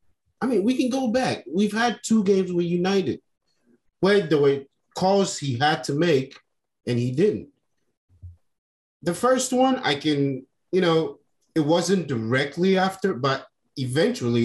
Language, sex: English, male